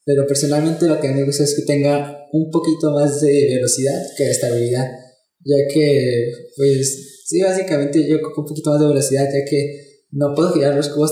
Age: 20-39